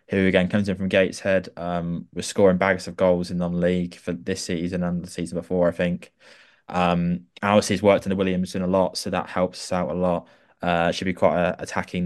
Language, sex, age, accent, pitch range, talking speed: English, male, 20-39, British, 90-95 Hz, 220 wpm